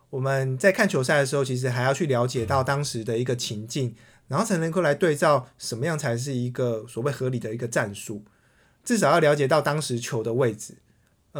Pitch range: 125-165 Hz